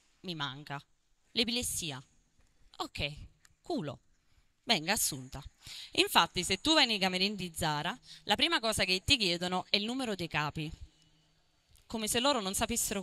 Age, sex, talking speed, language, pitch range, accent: 20-39, female, 145 wpm, Italian, 150-220 Hz, native